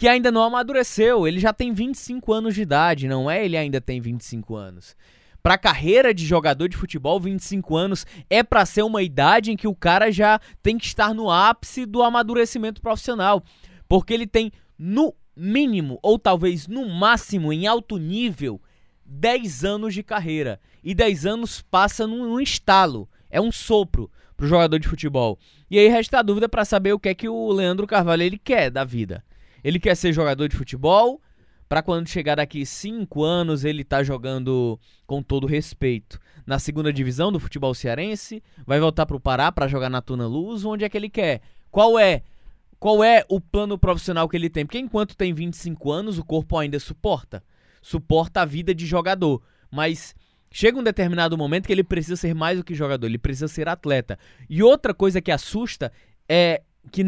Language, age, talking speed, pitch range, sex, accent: Portuguese, 20-39, 185 wpm, 145-215 Hz, male, Brazilian